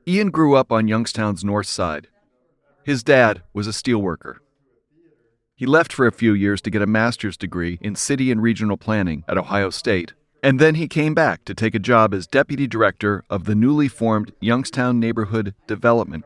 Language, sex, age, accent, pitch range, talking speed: English, male, 40-59, American, 100-125 Hz, 185 wpm